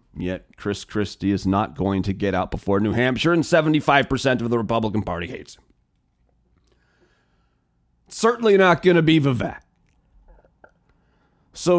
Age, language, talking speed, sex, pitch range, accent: 40-59, English, 135 wpm, male, 125-185 Hz, American